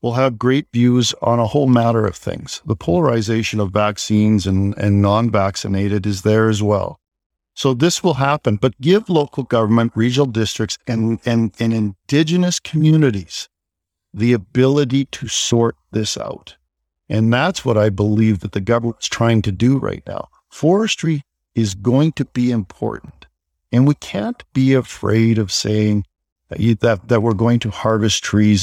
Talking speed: 160 wpm